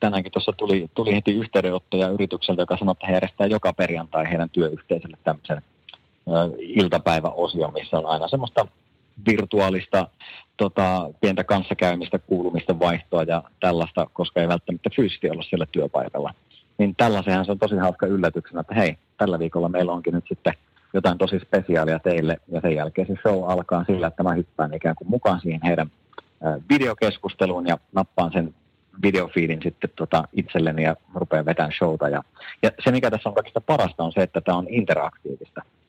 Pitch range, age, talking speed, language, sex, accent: 85-95 Hz, 30-49, 155 wpm, Finnish, male, native